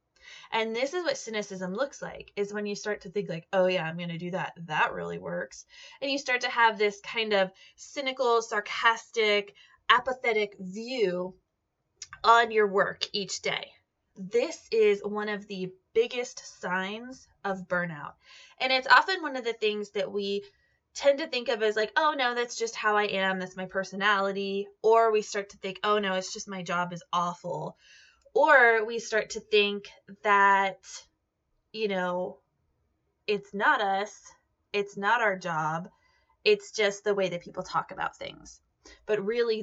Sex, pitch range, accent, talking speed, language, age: female, 190-235 Hz, American, 175 wpm, English, 20-39